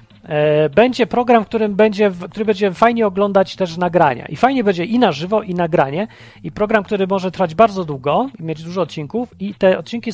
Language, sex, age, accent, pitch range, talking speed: Polish, male, 40-59, native, 145-200 Hz, 195 wpm